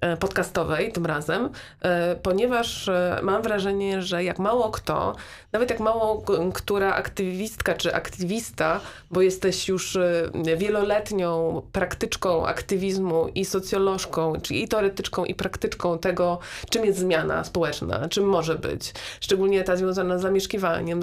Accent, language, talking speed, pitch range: native, Polish, 120 wpm, 170-195 Hz